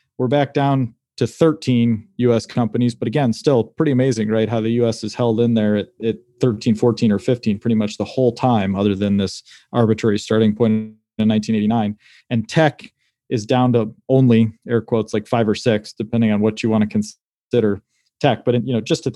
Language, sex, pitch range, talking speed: English, male, 110-135 Hz, 205 wpm